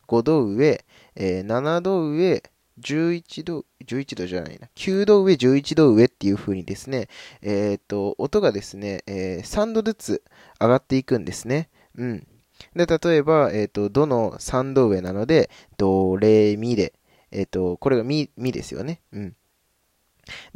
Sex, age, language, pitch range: male, 20-39, Japanese, 100-160 Hz